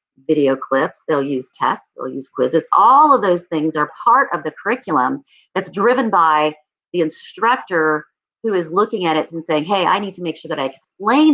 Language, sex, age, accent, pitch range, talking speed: English, female, 40-59, American, 155-205 Hz, 200 wpm